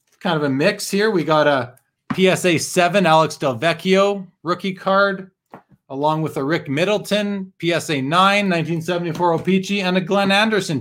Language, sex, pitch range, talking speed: English, male, 145-185 Hz, 155 wpm